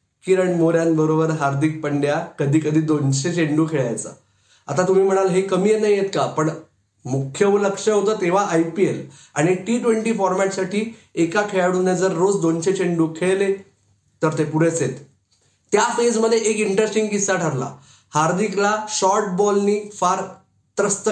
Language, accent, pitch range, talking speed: Marathi, native, 160-205 Hz, 115 wpm